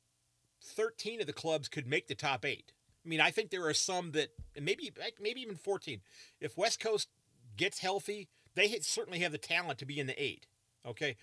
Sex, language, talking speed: male, English, 205 wpm